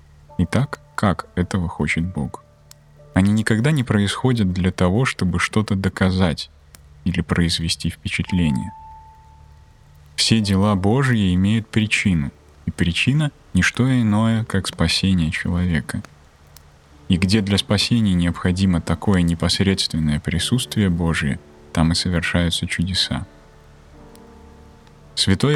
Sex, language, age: male, Russian, 20-39